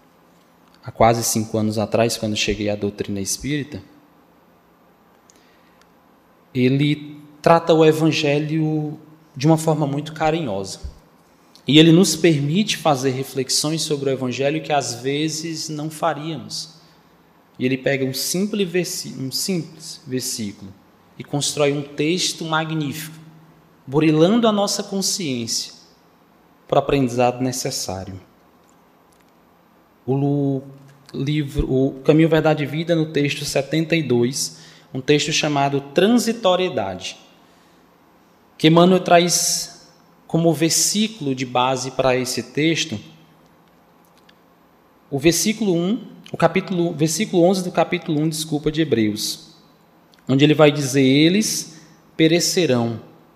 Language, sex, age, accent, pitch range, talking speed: Portuguese, male, 20-39, Brazilian, 130-165 Hz, 105 wpm